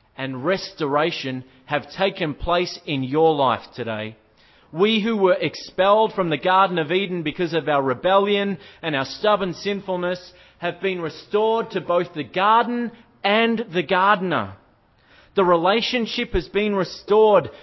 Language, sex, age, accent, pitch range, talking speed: English, male, 30-49, Australian, 175-220 Hz, 140 wpm